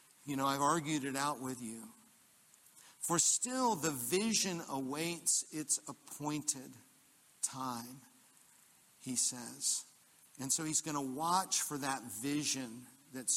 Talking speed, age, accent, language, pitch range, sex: 125 wpm, 50-69, American, English, 130-165 Hz, male